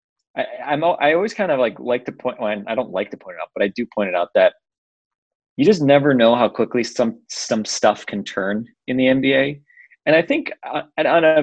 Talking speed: 225 wpm